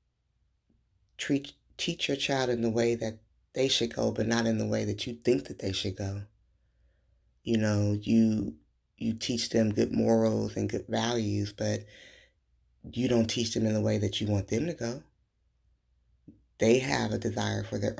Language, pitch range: English, 105-120 Hz